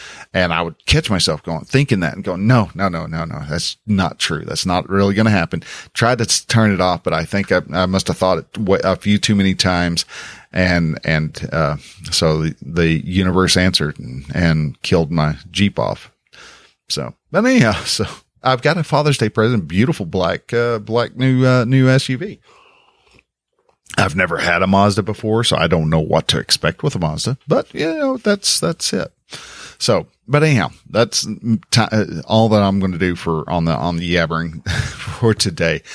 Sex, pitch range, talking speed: male, 85-115 Hz, 190 wpm